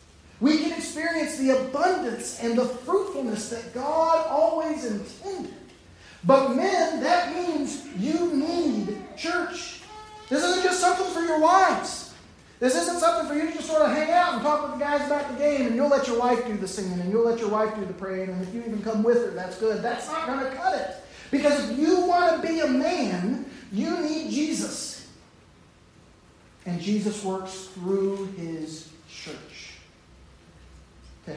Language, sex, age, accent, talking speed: English, male, 40-59, American, 180 wpm